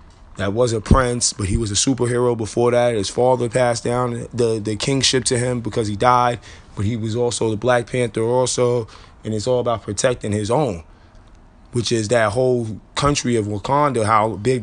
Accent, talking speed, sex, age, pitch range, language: American, 195 wpm, male, 20-39, 100-125 Hz, English